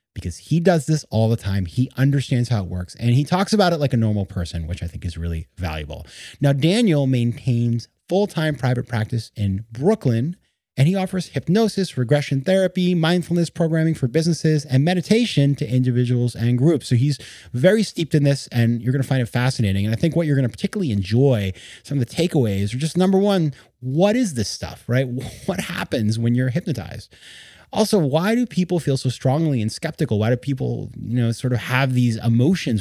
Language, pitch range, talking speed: English, 110-150 Hz, 200 wpm